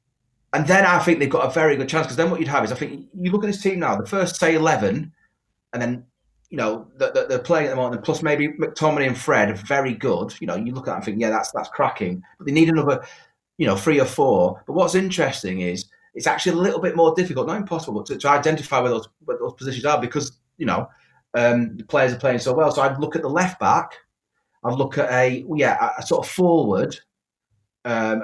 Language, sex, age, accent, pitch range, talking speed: English, male, 30-49, British, 115-160 Hz, 245 wpm